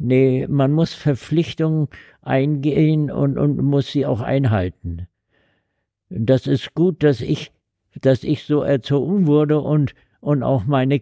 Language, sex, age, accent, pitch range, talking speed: German, male, 60-79, German, 115-140 Hz, 135 wpm